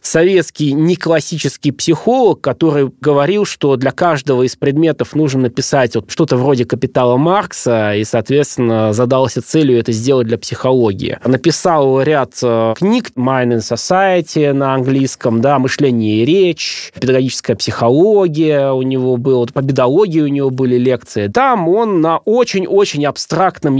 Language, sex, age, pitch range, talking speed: Russian, male, 20-39, 120-155 Hz, 130 wpm